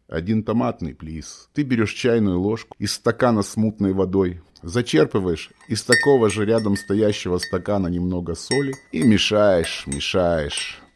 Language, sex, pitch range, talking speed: Russian, male, 90-115 Hz, 130 wpm